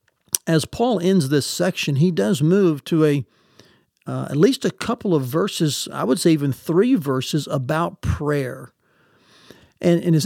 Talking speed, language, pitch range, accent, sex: 165 wpm, English, 150-190 Hz, American, male